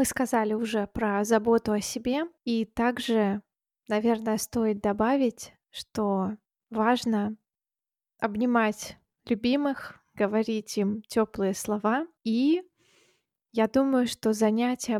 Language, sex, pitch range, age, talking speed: Russian, female, 210-245 Hz, 20-39, 100 wpm